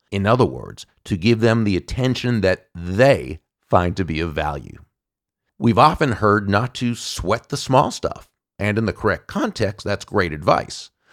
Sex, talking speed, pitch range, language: male, 175 wpm, 95-130 Hz, English